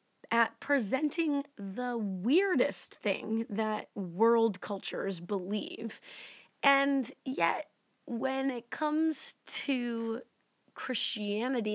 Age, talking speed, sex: 20-39, 80 wpm, female